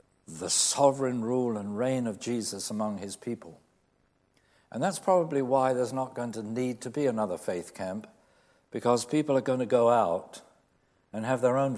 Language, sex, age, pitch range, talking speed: English, male, 60-79, 105-130 Hz, 180 wpm